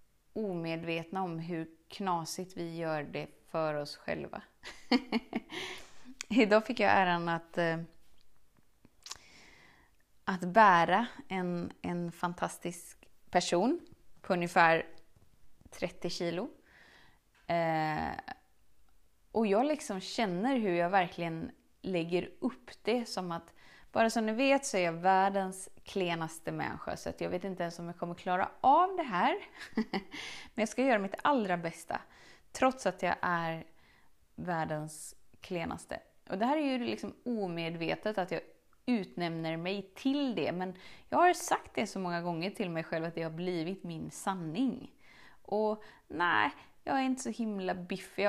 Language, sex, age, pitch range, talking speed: Swedish, female, 20-39, 170-225 Hz, 140 wpm